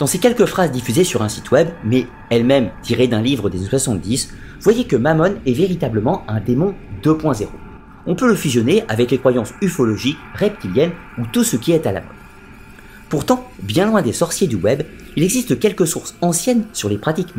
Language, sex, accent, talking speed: French, male, French, 195 wpm